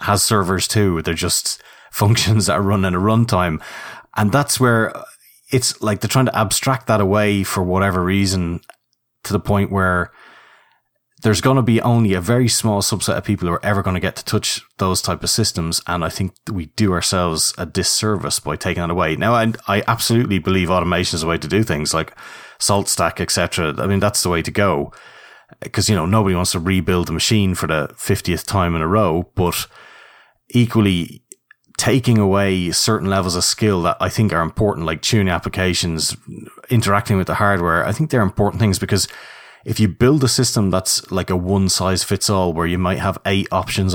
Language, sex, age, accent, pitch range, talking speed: English, male, 30-49, Irish, 90-110 Hz, 205 wpm